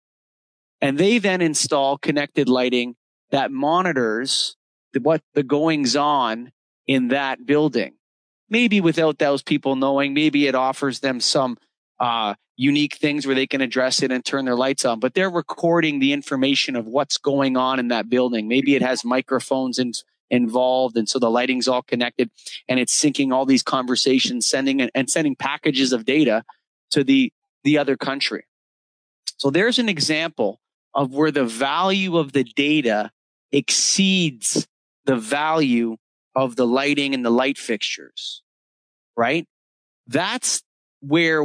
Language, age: English, 30-49